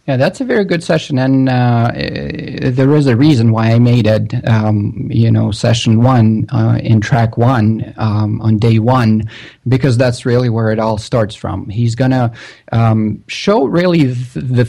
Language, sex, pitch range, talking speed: English, male, 115-140 Hz, 175 wpm